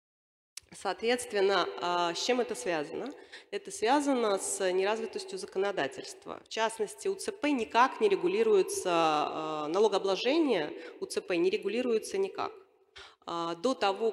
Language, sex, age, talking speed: Russian, female, 30-49, 105 wpm